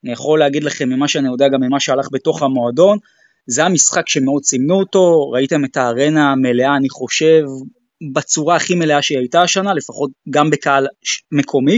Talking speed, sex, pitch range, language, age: 170 wpm, male, 140-190 Hz, Hebrew, 20-39